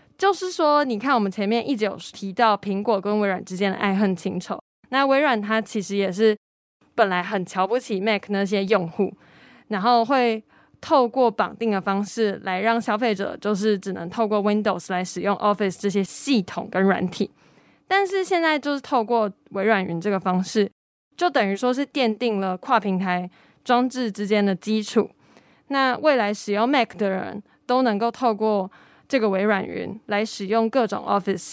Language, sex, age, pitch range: Chinese, female, 20-39, 195-240 Hz